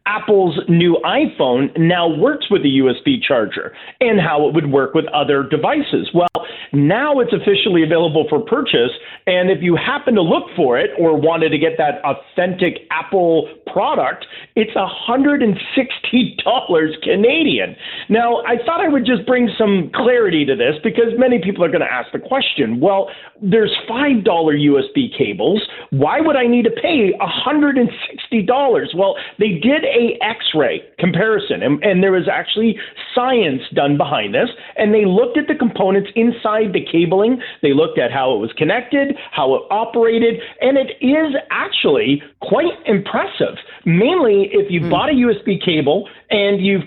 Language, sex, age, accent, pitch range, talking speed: English, male, 40-59, American, 180-245 Hz, 160 wpm